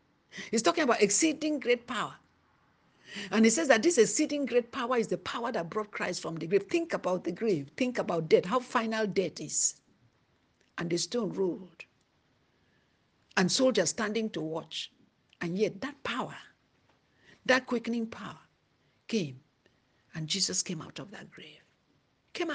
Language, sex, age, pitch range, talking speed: English, female, 60-79, 175-240 Hz, 160 wpm